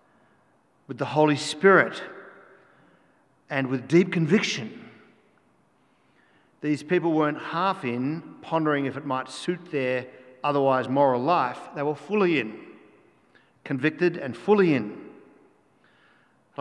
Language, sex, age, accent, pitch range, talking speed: English, male, 50-69, Australian, 130-170 Hz, 110 wpm